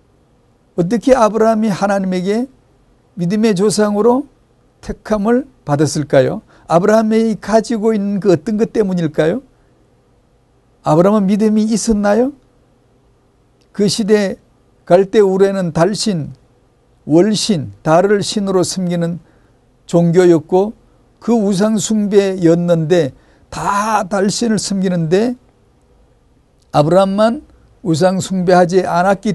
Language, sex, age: Korean, male, 50-69